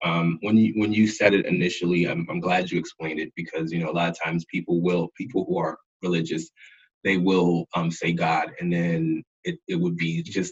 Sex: male